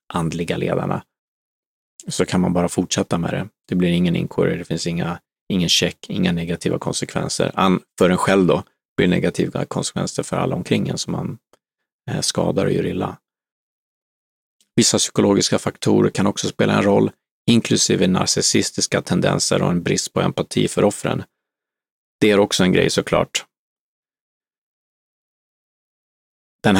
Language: Swedish